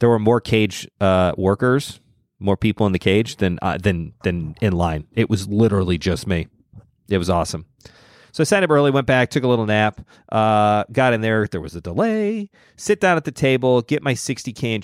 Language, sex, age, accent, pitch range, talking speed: English, male, 30-49, American, 100-130 Hz, 215 wpm